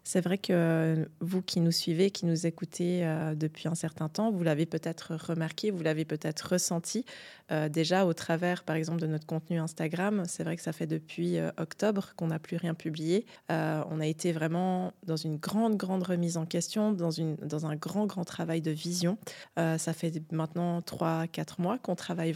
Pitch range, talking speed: 160-185 Hz, 200 wpm